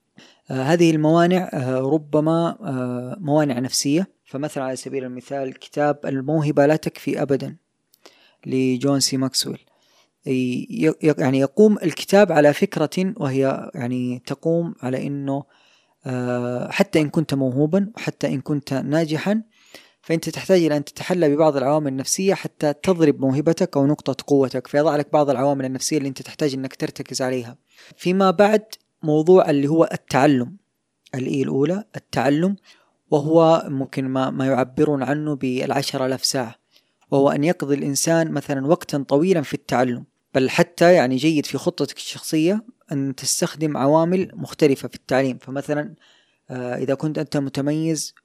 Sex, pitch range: female, 135-160 Hz